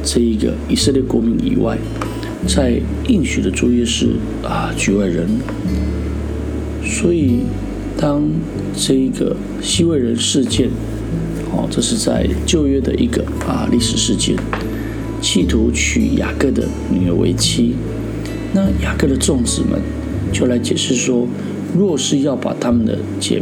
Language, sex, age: Chinese, male, 50-69